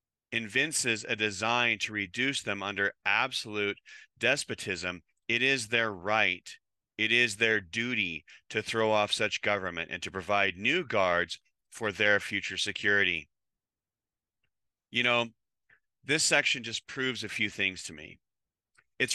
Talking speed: 135 wpm